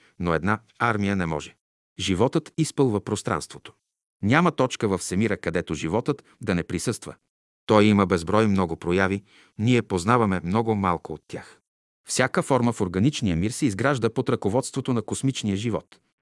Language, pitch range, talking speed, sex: Bulgarian, 90-125 Hz, 150 wpm, male